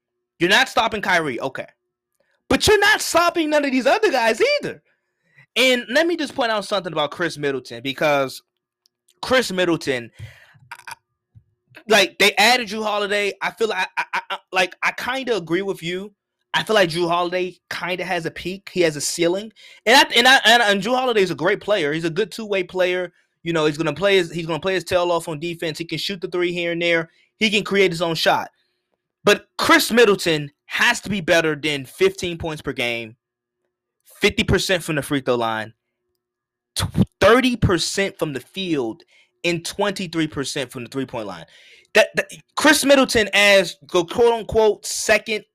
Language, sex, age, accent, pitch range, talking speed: English, male, 20-39, American, 160-215 Hz, 185 wpm